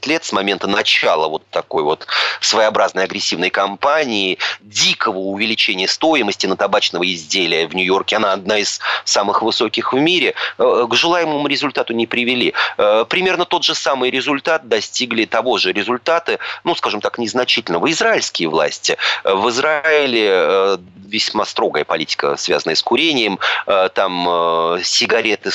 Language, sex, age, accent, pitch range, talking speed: Russian, male, 30-49, native, 95-145 Hz, 130 wpm